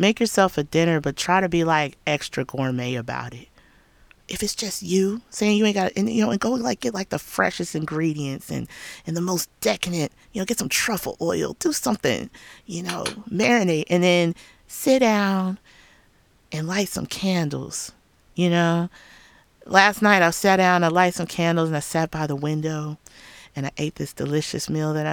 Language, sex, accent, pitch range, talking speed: English, female, American, 145-200 Hz, 190 wpm